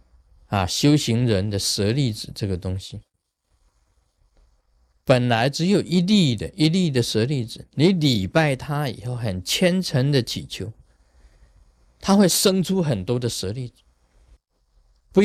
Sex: male